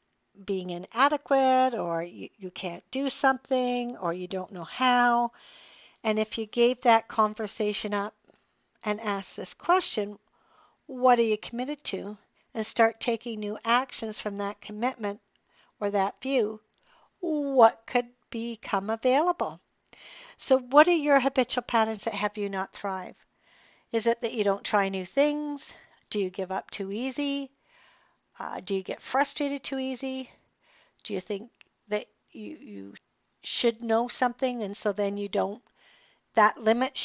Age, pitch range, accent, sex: 60-79, 205-255 Hz, American, female